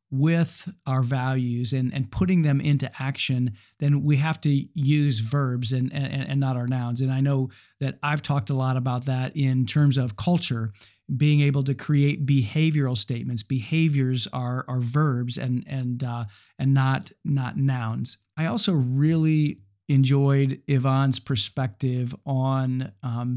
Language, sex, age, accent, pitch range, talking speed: English, male, 50-69, American, 125-150 Hz, 155 wpm